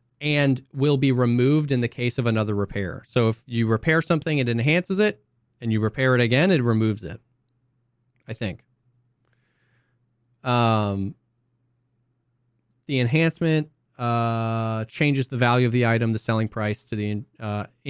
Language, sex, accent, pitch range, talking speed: English, male, American, 115-135 Hz, 150 wpm